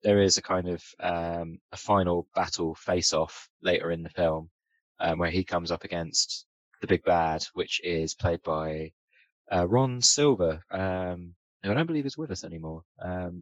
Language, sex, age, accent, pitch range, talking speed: English, male, 20-39, British, 85-100 Hz, 180 wpm